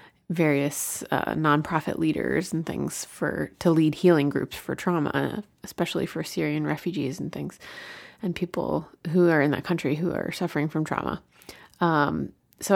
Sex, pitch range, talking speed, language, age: female, 155-195 Hz, 155 wpm, English, 30-49